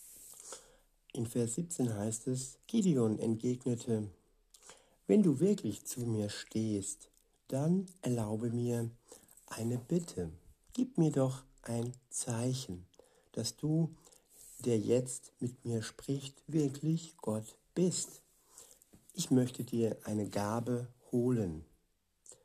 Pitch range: 115-135 Hz